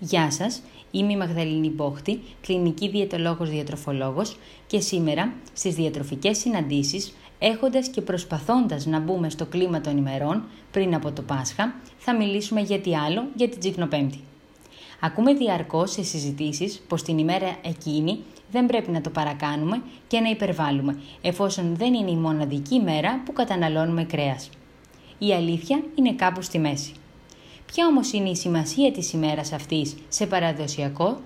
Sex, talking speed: female, 140 wpm